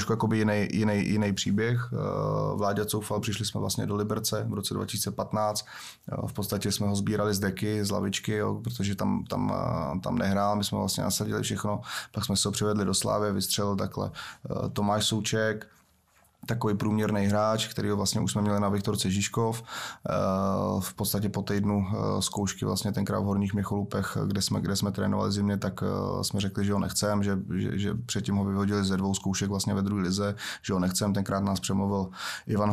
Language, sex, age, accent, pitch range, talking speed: Czech, male, 30-49, native, 100-105 Hz, 175 wpm